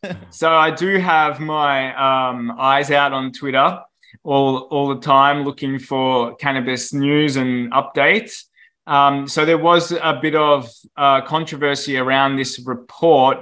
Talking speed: 145 wpm